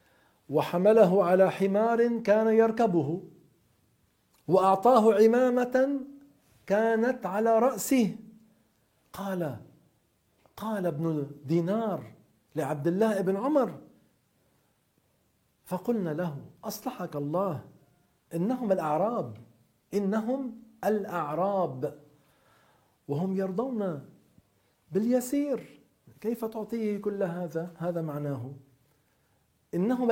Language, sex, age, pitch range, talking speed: Arabic, male, 50-69, 145-215 Hz, 70 wpm